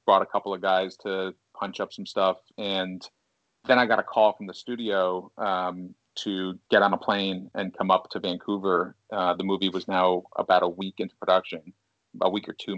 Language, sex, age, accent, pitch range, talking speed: English, male, 30-49, American, 90-110 Hz, 205 wpm